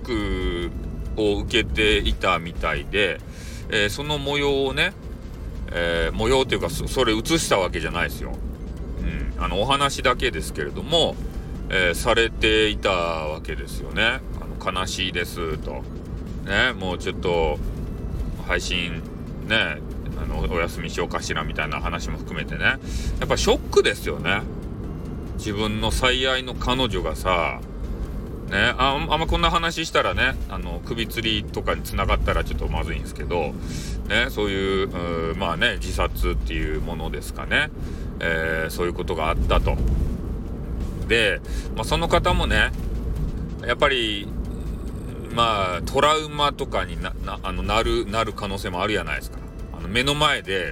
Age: 40-59